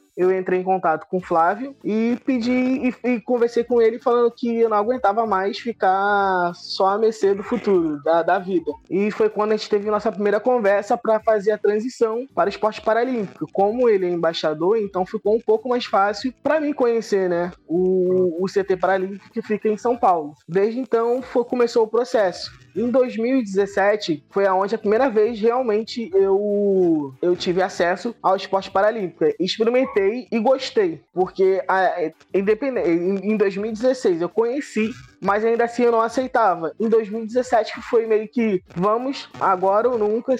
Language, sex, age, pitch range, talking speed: Portuguese, male, 20-39, 185-235 Hz, 170 wpm